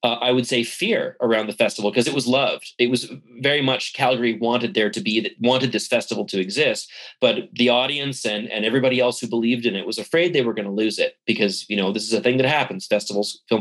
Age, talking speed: 30-49, 245 wpm